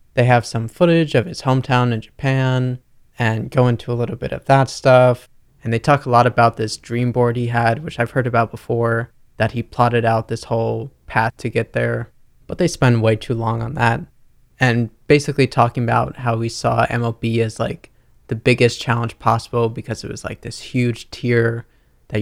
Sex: male